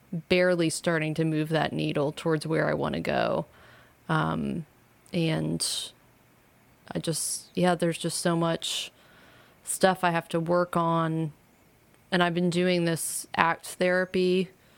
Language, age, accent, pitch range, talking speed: English, 20-39, American, 160-180 Hz, 140 wpm